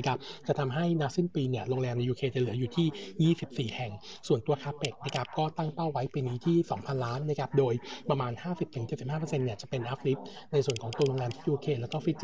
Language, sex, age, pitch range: Thai, male, 60-79, 125-155 Hz